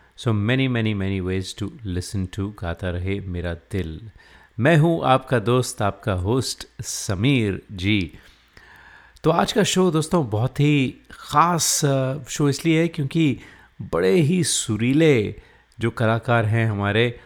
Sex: male